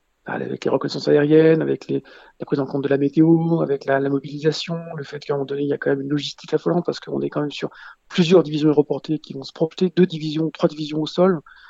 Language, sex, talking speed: French, male, 255 wpm